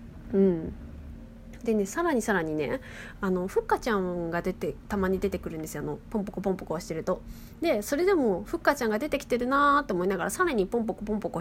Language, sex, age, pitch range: Japanese, female, 20-39, 175-280 Hz